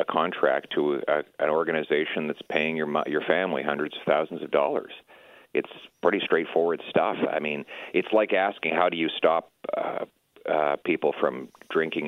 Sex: male